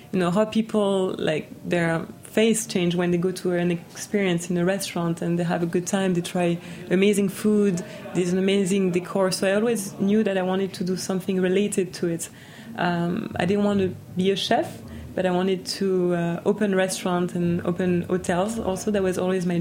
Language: English